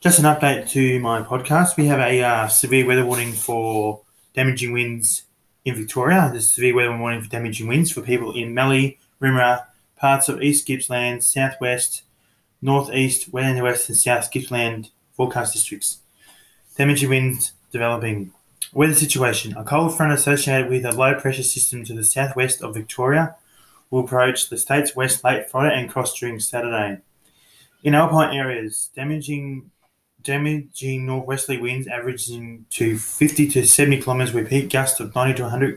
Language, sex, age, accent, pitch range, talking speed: English, male, 20-39, Australian, 120-135 Hz, 160 wpm